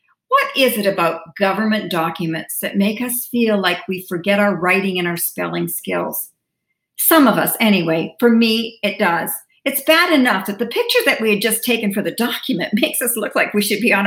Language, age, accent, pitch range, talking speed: English, 50-69, American, 205-280 Hz, 210 wpm